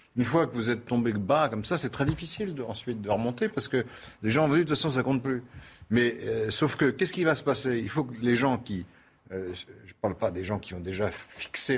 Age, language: 60-79, French